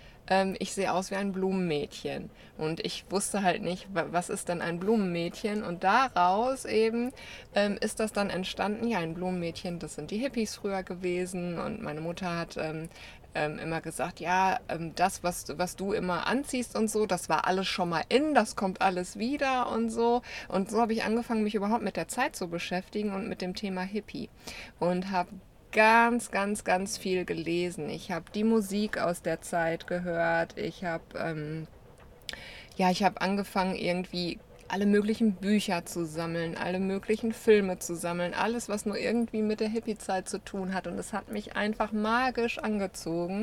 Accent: German